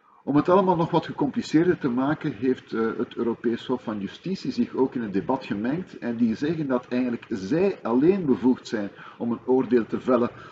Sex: male